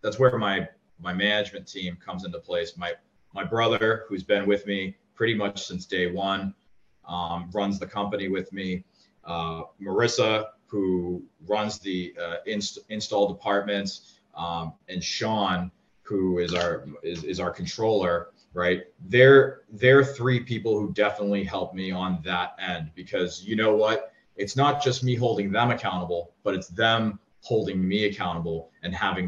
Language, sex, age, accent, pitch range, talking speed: English, male, 20-39, American, 95-120 Hz, 160 wpm